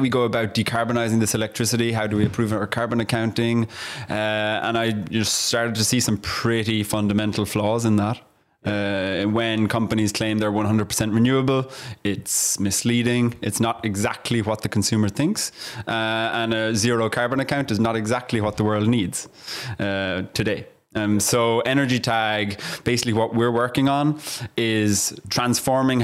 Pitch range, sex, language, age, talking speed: 105-120 Hz, male, English, 20-39, 155 wpm